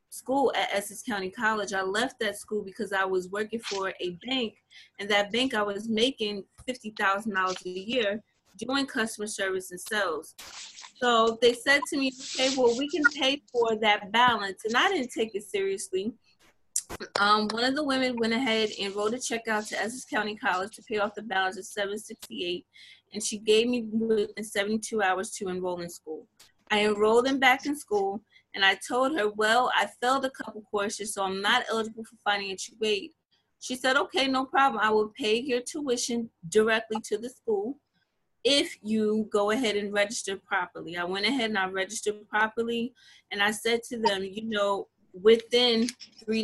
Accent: American